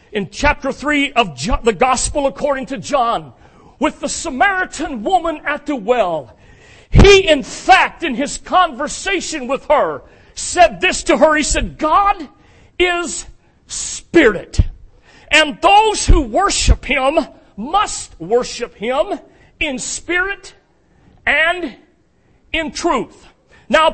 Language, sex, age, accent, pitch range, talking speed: English, male, 40-59, American, 275-340 Hz, 120 wpm